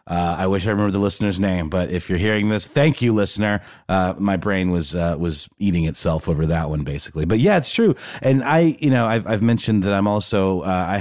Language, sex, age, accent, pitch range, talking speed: English, male, 30-49, American, 90-130 Hz, 240 wpm